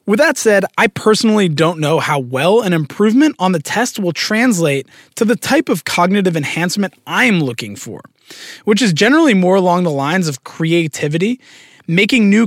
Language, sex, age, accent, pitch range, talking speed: English, male, 20-39, American, 150-215 Hz, 175 wpm